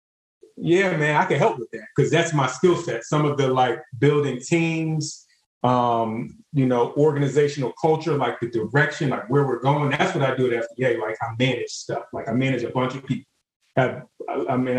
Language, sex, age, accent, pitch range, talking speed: English, male, 30-49, American, 130-160 Hz, 205 wpm